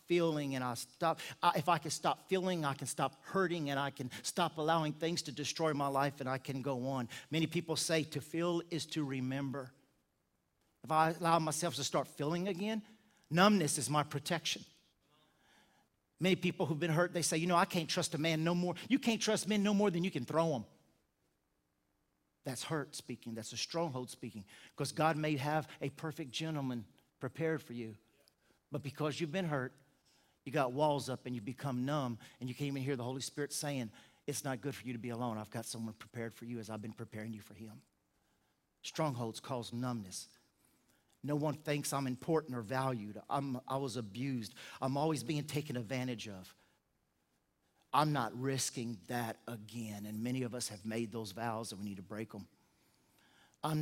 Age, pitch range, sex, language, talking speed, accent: 50-69, 120-160 Hz, male, English, 195 wpm, American